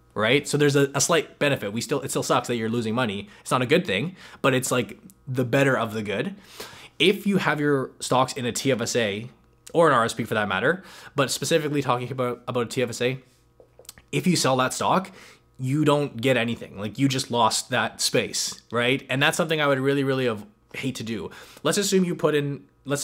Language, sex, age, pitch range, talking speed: English, male, 20-39, 115-150 Hz, 215 wpm